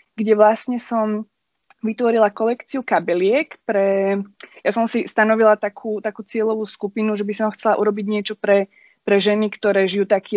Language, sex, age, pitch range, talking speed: Slovak, female, 20-39, 200-225 Hz, 155 wpm